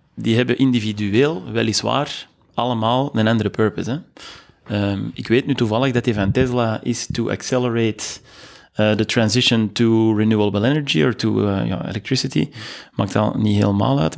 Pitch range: 110-135 Hz